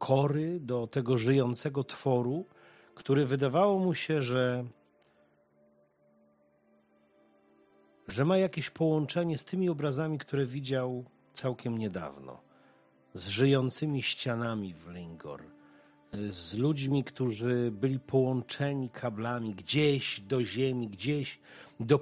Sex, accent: male, native